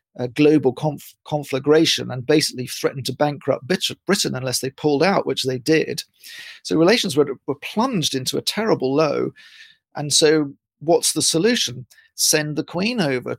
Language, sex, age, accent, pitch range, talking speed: English, male, 40-59, British, 130-160 Hz, 155 wpm